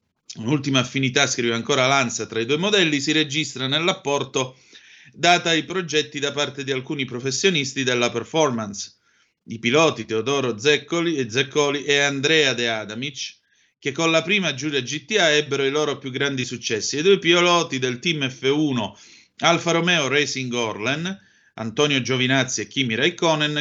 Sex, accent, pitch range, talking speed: male, native, 115-155 Hz, 145 wpm